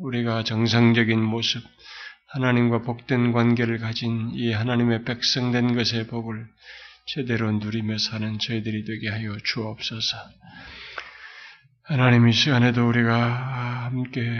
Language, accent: Korean, native